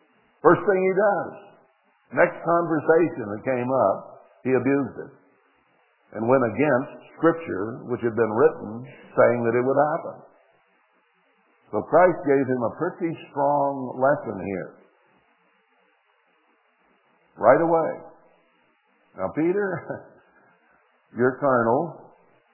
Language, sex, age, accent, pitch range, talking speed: English, male, 60-79, American, 115-140 Hz, 105 wpm